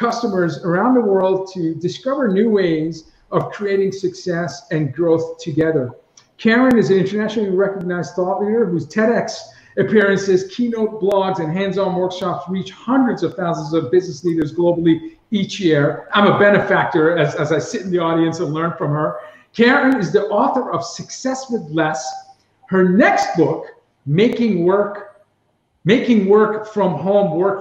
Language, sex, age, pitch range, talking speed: English, male, 50-69, 170-215 Hz, 155 wpm